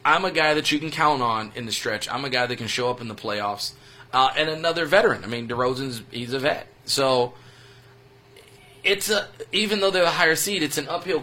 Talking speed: 230 wpm